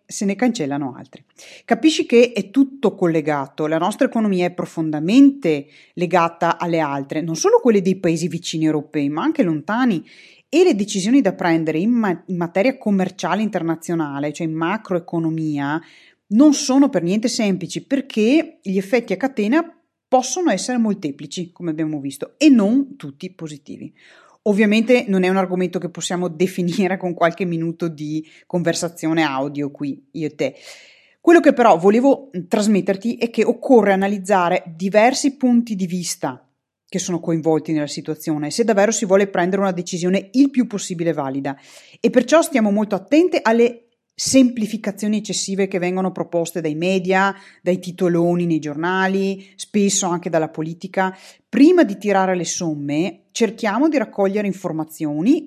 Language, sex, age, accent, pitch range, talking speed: Italian, female, 30-49, native, 165-235 Hz, 150 wpm